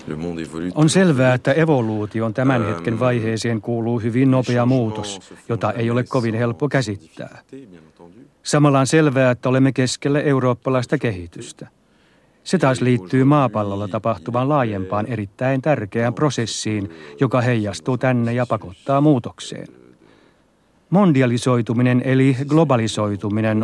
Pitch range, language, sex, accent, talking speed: 105-130 Hz, Finnish, male, native, 110 wpm